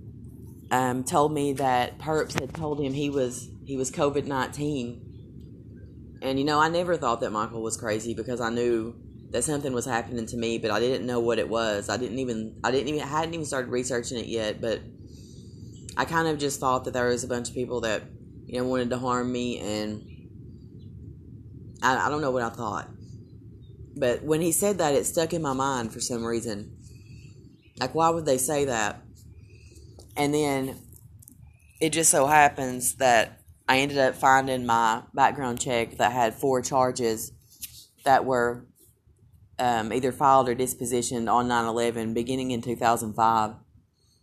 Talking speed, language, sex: 175 wpm, English, female